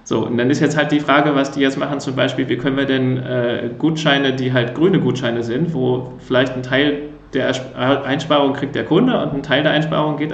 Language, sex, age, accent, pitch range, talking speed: German, male, 40-59, German, 120-140 Hz, 230 wpm